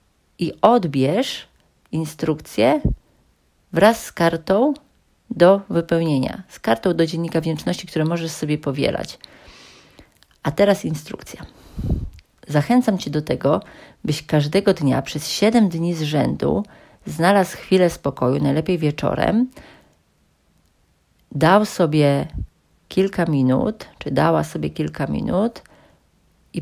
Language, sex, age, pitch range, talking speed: Polish, female, 40-59, 155-195 Hz, 105 wpm